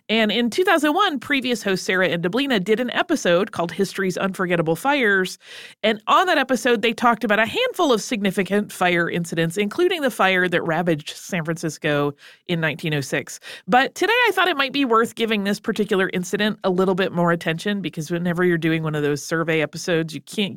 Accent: American